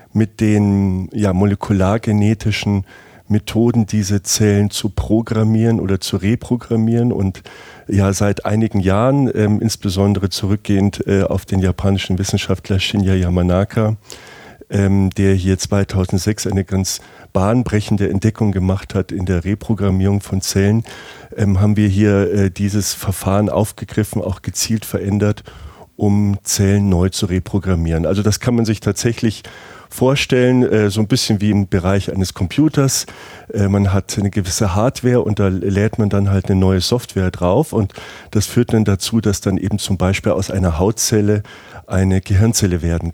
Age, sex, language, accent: 40-59, male, German, German